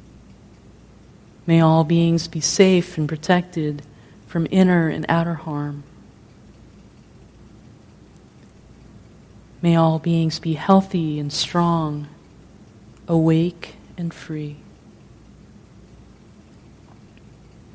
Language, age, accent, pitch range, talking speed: English, 30-49, American, 150-170 Hz, 75 wpm